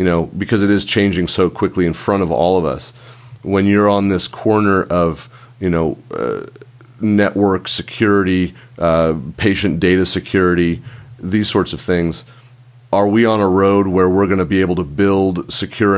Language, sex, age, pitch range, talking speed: English, male, 30-49, 90-115 Hz, 175 wpm